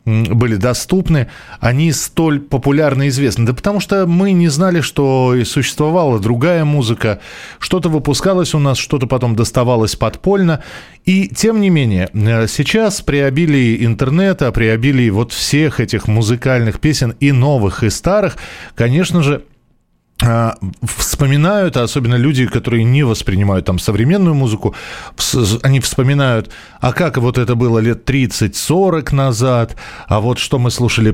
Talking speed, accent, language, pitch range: 135 wpm, native, Russian, 115-165 Hz